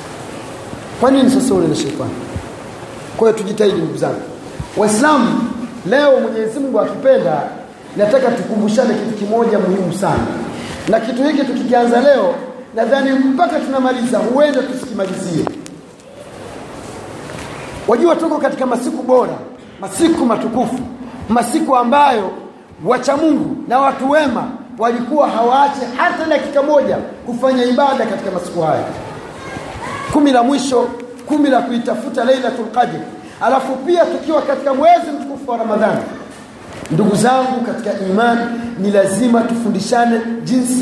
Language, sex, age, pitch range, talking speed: Swahili, male, 40-59, 235-280 Hz, 115 wpm